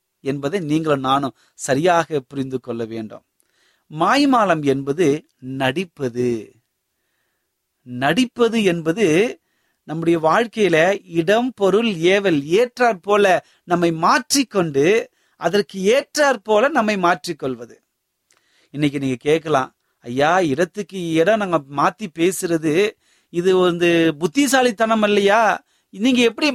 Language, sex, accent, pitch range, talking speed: Tamil, male, native, 135-195 Hz, 85 wpm